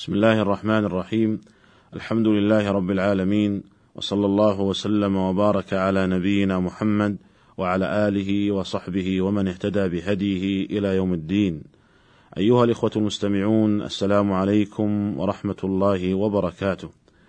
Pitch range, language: 100-110 Hz, Arabic